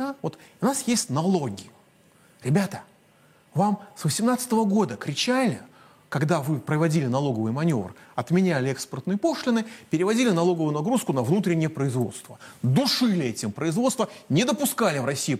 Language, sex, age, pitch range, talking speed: Russian, male, 30-49, 130-210 Hz, 125 wpm